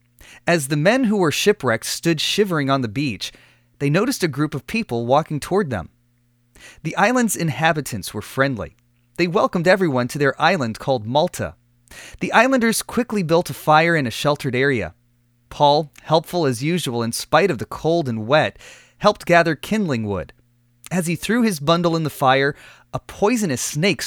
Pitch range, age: 120-170 Hz, 30-49